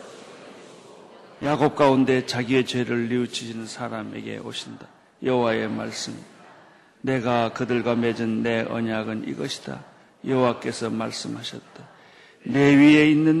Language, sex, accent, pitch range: Korean, male, native, 125-200 Hz